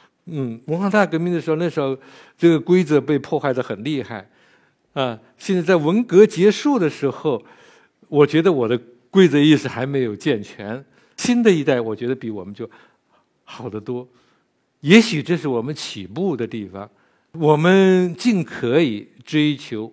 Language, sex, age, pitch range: Chinese, male, 60-79, 115-155 Hz